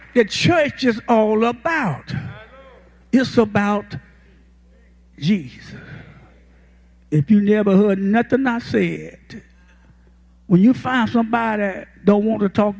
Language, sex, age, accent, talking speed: English, male, 60-79, American, 110 wpm